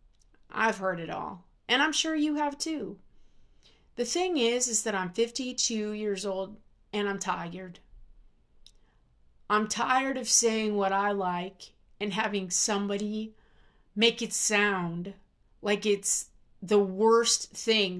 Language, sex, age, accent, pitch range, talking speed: English, female, 30-49, American, 185-235 Hz, 135 wpm